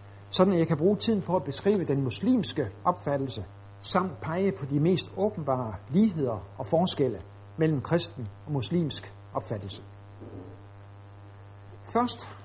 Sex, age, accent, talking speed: male, 60-79, native, 130 wpm